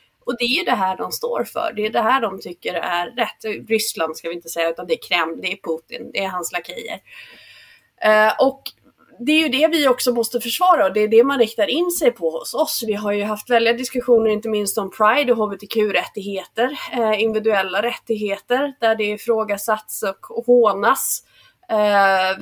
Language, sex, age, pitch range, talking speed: English, female, 30-49, 195-265 Hz, 205 wpm